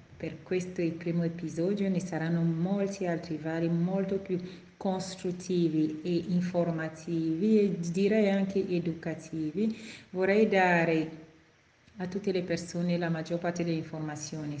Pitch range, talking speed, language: 165-195 Hz, 125 wpm, Italian